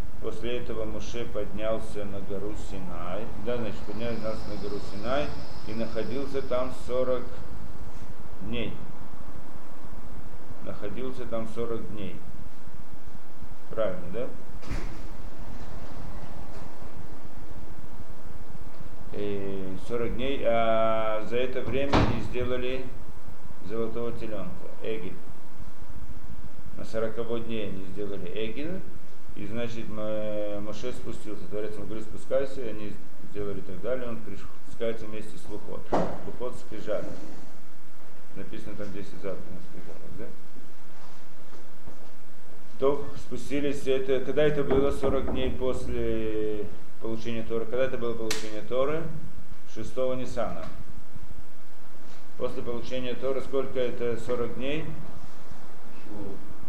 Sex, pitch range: male, 105-125 Hz